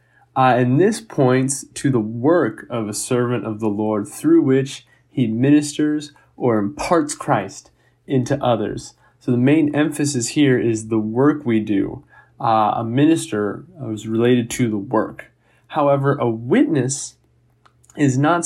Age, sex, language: 20-39, male, English